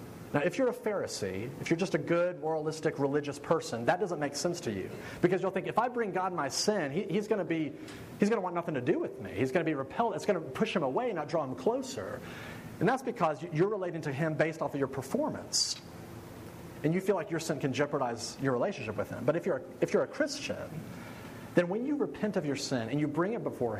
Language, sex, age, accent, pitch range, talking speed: English, male, 40-59, American, 145-205 Hz, 245 wpm